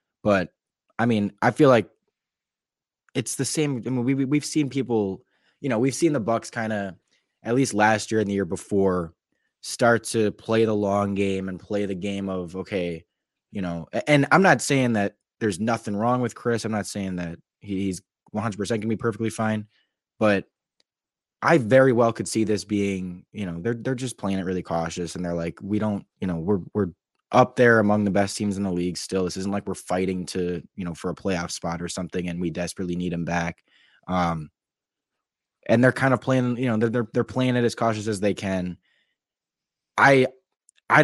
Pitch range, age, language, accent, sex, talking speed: 95-115 Hz, 20-39, English, American, male, 205 wpm